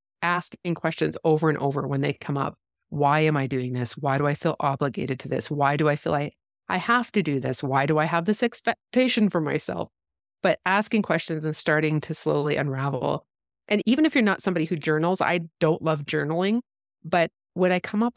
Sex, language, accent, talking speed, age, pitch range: female, English, American, 210 wpm, 30-49, 145-195 Hz